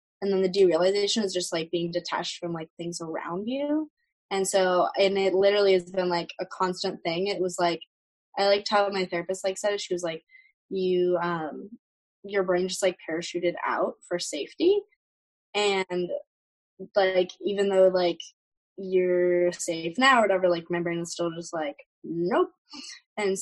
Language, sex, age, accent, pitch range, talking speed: English, female, 10-29, American, 175-205 Hz, 175 wpm